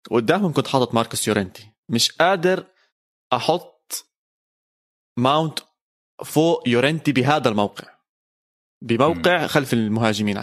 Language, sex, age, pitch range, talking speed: Arabic, male, 20-39, 115-155 Hz, 90 wpm